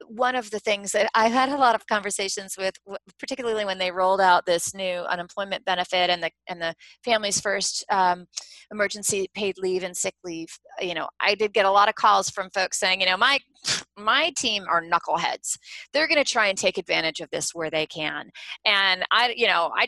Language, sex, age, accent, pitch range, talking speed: English, female, 30-49, American, 175-215 Hz, 210 wpm